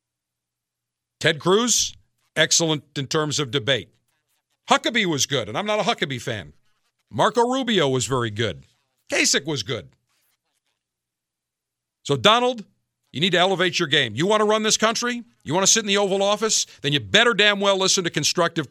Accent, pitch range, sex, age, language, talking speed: American, 135-200 Hz, male, 50-69, English, 175 wpm